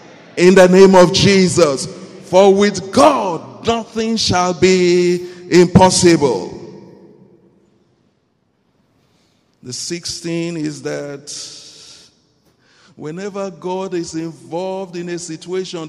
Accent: Nigerian